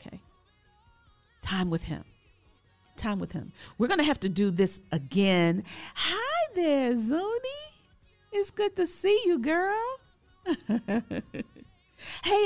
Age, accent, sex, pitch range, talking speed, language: 40-59, American, female, 160-245 Hz, 120 wpm, English